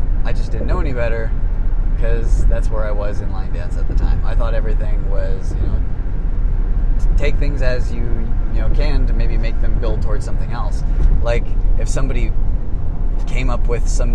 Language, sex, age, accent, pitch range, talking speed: English, male, 20-39, American, 85-110 Hz, 190 wpm